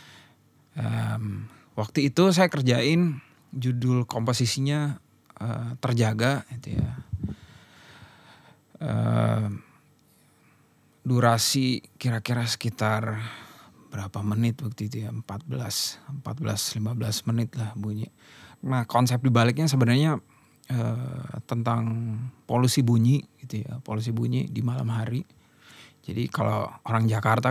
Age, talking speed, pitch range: 30-49, 95 wpm, 115-135 Hz